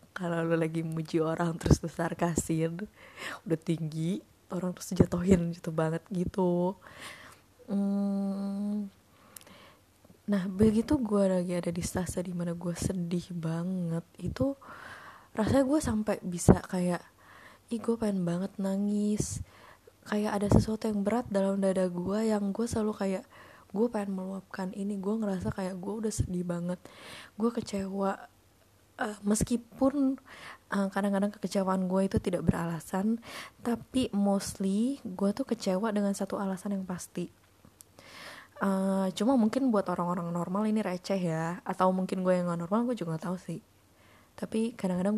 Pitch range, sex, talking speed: 175-205 Hz, female, 140 wpm